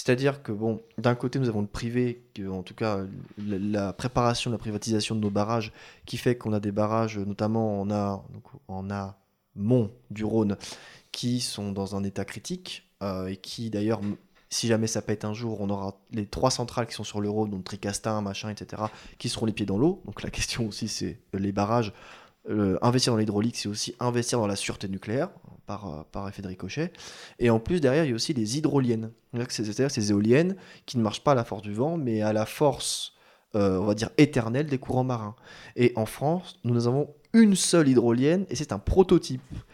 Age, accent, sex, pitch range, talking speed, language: 20-39, French, male, 105-130 Hz, 205 wpm, French